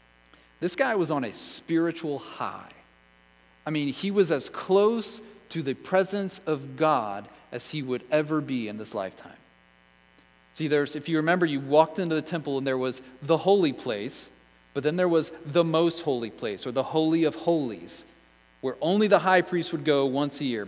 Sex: male